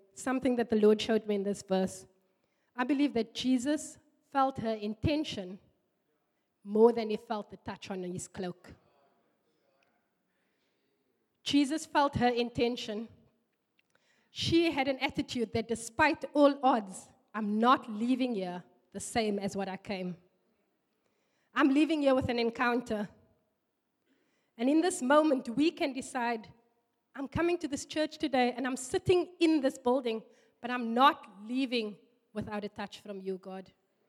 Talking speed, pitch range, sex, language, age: 145 wpm, 200-265 Hz, female, English, 20-39